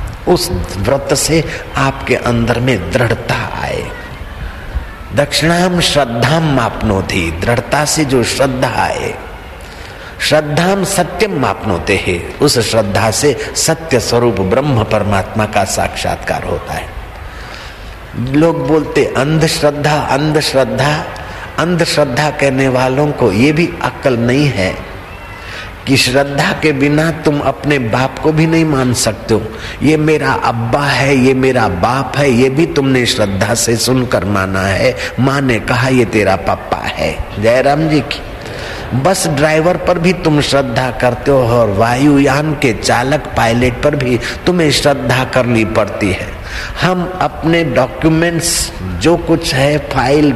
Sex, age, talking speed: male, 50-69, 140 wpm